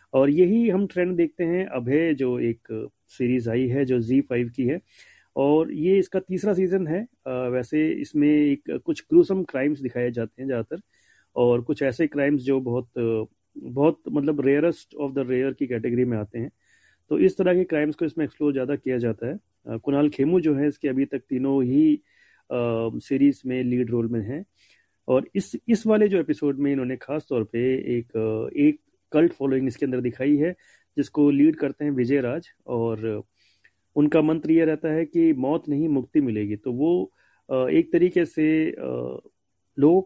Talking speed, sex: 175 wpm, male